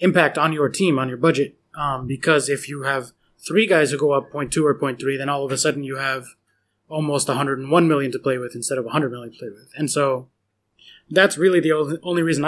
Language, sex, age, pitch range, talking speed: English, male, 20-39, 135-160 Hz, 235 wpm